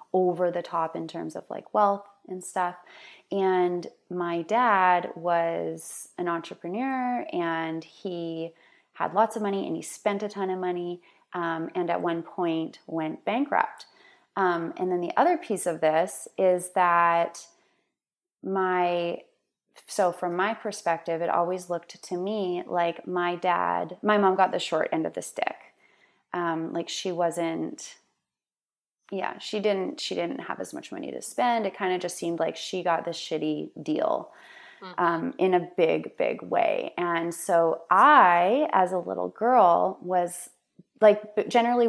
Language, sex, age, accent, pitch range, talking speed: English, female, 20-39, American, 165-195 Hz, 160 wpm